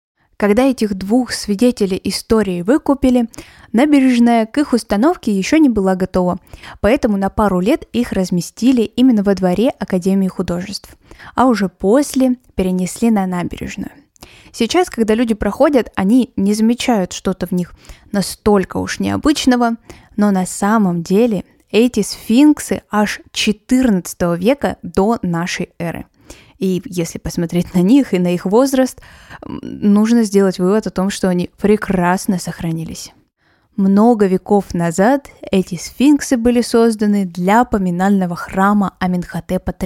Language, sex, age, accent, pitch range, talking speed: Russian, female, 20-39, native, 185-240 Hz, 130 wpm